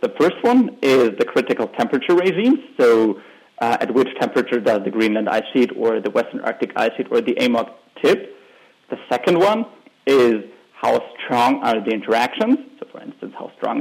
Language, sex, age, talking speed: English, male, 30-49, 185 wpm